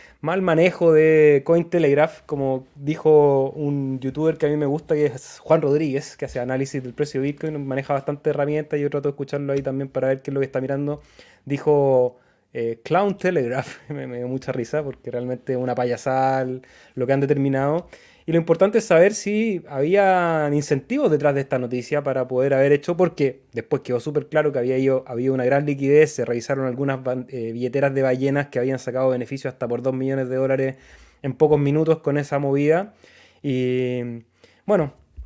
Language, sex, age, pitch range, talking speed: Spanish, male, 20-39, 130-150 Hz, 190 wpm